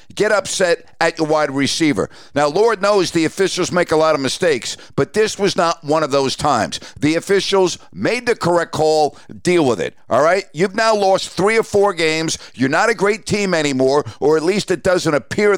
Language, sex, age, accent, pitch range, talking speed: English, male, 50-69, American, 150-190 Hz, 210 wpm